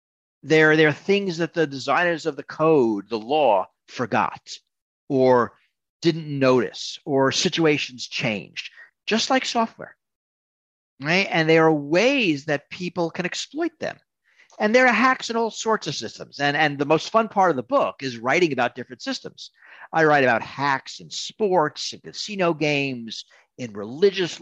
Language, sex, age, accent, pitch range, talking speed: English, male, 50-69, American, 135-200 Hz, 160 wpm